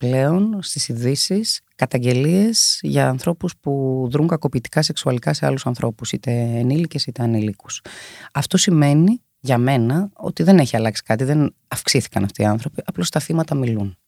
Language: Greek